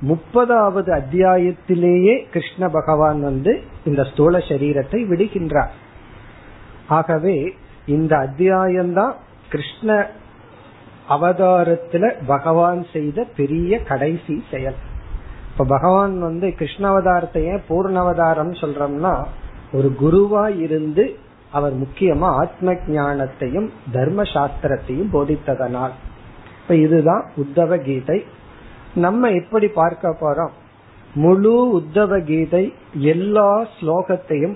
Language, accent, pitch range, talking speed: Tamil, native, 140-190 Hz, 75 wpm